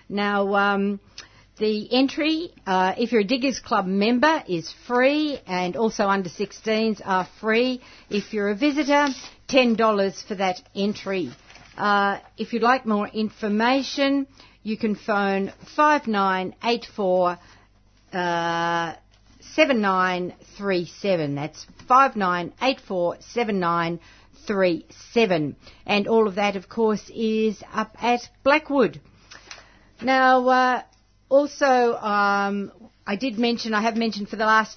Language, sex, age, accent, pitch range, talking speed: English, female, 50-69, Australian, 190-240 Hz, 110 wpm